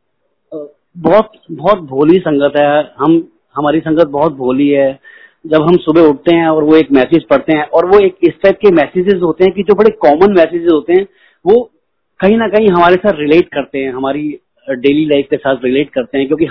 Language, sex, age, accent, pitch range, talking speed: Hindi, male, 30-49, native, 140-195 Hz, 205 wpm